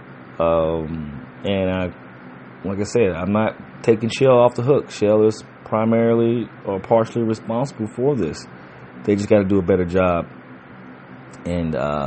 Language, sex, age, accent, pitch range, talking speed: English, male, 30-49, American, 75-95 Hz, 145 wpm